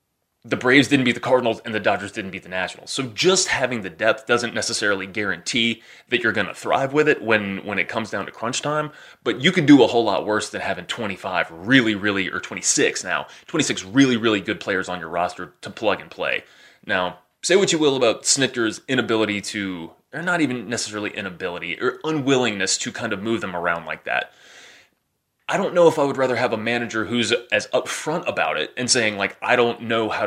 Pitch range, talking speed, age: 105-135 Hz, 220 wpm, 30-49